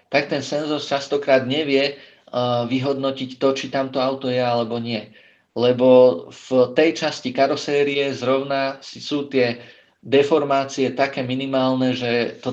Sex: male